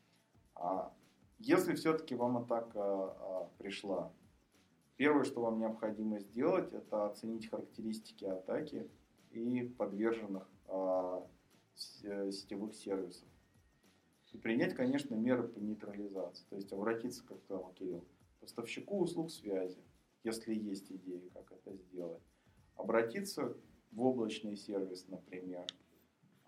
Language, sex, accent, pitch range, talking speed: Russian, male, native, 95-120 Hz, 100 wpm